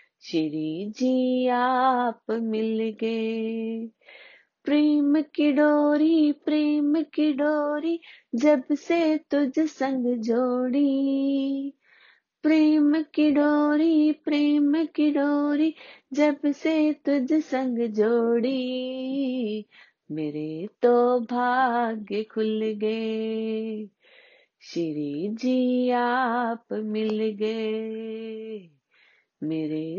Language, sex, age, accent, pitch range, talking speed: Hindi, female, 30-49, native, 225-300 Hz, 75 wpm